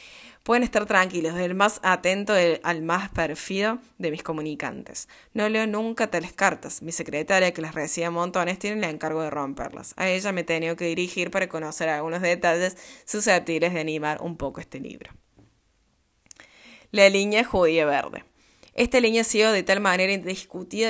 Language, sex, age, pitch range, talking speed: Spanish, female, 20-39, 160-195 Hz, 170 wpm